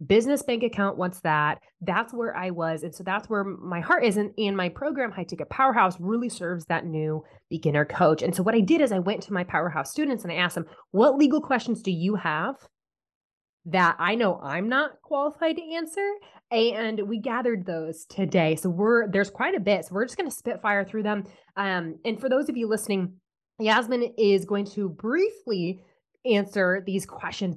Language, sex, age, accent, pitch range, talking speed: English, female, 20-39, American, 170-220 Hz, 205 wpm